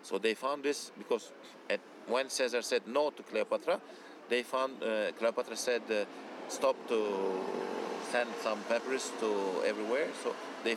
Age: 50-69